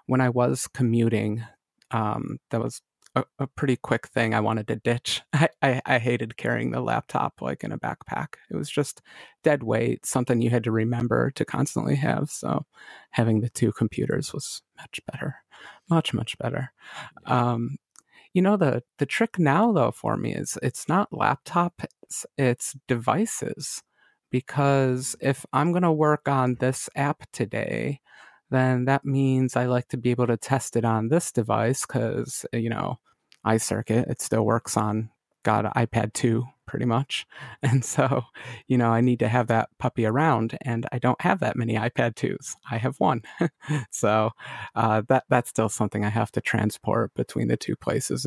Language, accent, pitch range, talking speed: English, American, 115-135 Hz, 175 wpm